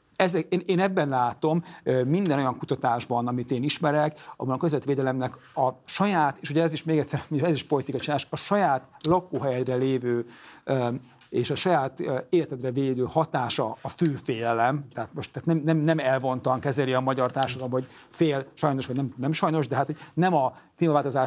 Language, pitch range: Hungarian, 130-160 Hz